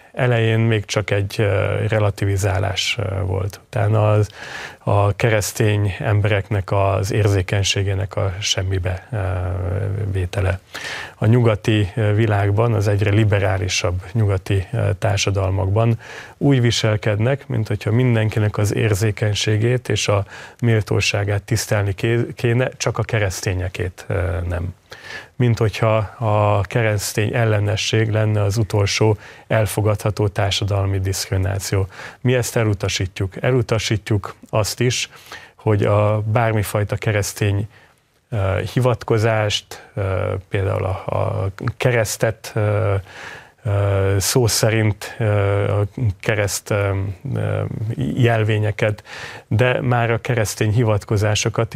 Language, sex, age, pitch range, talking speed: Hungarian, male, 30-49, 100-115 Hz, 85 wpm